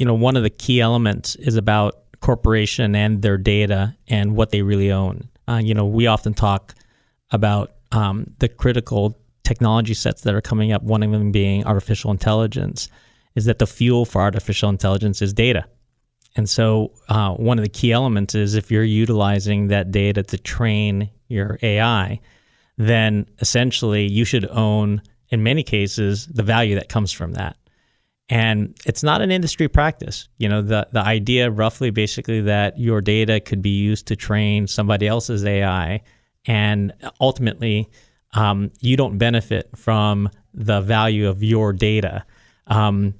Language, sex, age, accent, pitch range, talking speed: English, male, 30-49, American, 105-120 Hz, 165 wpm